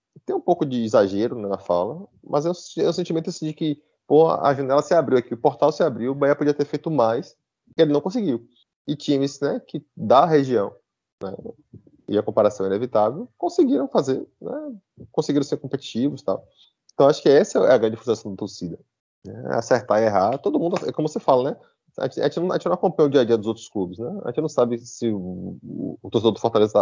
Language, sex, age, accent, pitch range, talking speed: Portuguese, male, 20-39, Brazilian, 115-160 Hz, 225 wpm